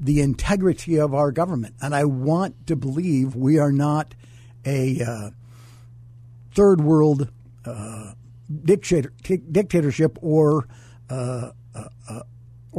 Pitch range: 120-180 Hz